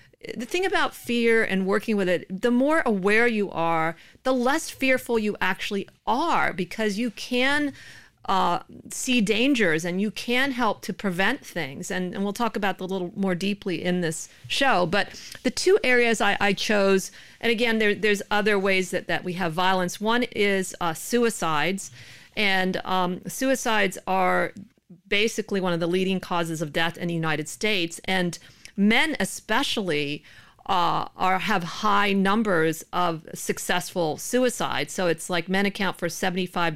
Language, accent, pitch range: English, American, 180-220 Hz